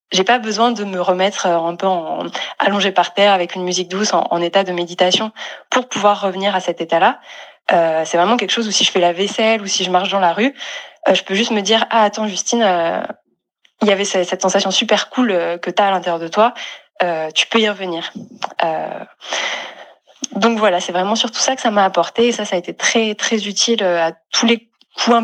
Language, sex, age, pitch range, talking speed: French, female, 20-39, 180-220 Hz, 240 wpm